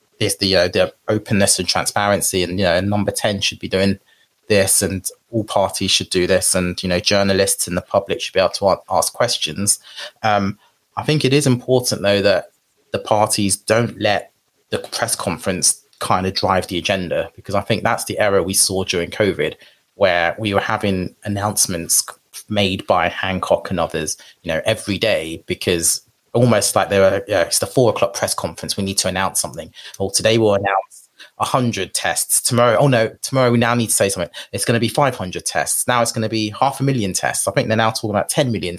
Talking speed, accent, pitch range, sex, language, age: 215 wpm, British, 95-115 Hz, male, English, 30-49